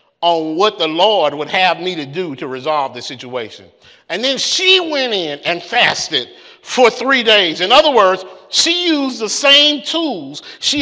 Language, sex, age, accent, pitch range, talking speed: English, male, 50-69, American, 190-285 Hz, 180 wpm